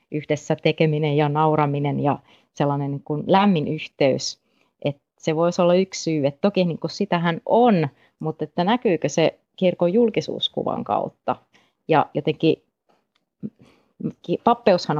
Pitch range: 145-175 Hz